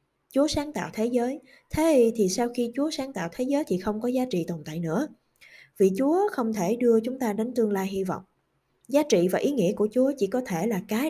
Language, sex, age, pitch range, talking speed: Vietnamese, female, 20-39, 190-255 Hz, 250 wpm